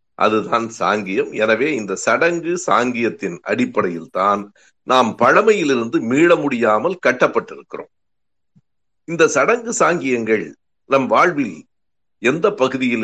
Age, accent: 60-79, native